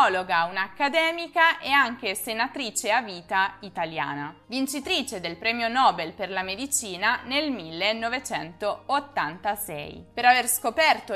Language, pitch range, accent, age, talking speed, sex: Italian, 190-270 Hz, native, 20-39, 100 wpm, female